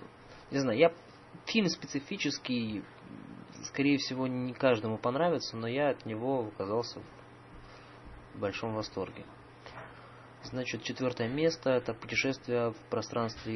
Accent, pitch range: native, 110-130 Hz